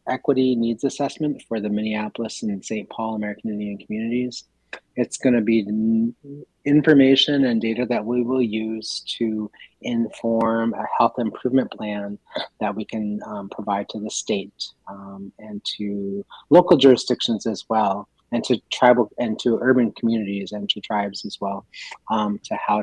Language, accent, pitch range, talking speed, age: English, American, 100-125 Hz, 160 wpm, 30-49